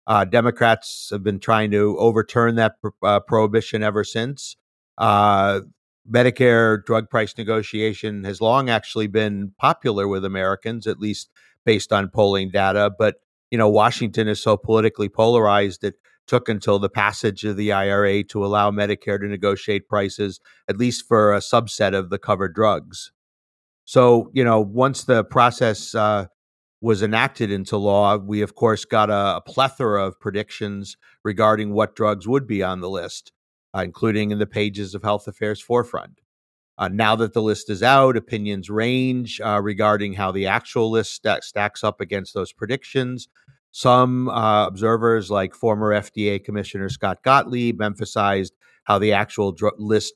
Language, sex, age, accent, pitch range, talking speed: English, male, 50-69, American, 100-115 Hz, 160 wpm